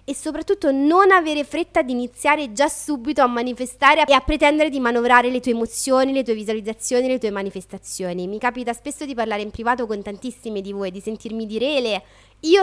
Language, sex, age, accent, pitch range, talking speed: Italian, female, 20-39, native, 215-275 Hz, 190 wpm